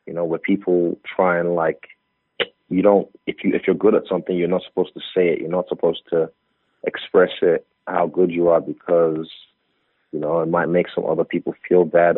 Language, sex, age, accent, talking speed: English, male, 30-49, American, 205 wpm